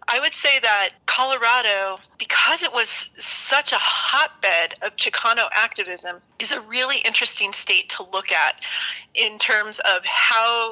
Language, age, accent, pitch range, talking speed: English, 30-49, American, 195-245 Hz, 145 wpm